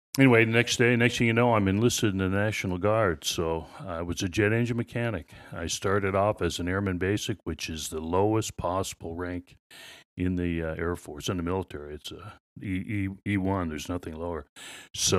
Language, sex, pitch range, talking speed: English, male, 85-100 Hz, 190 wpm